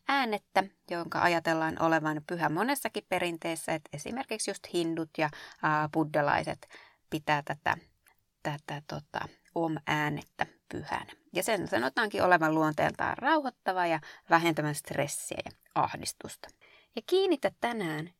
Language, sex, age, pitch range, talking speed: Finnish, female, 20-39, 160-225 Hz, 115 wpm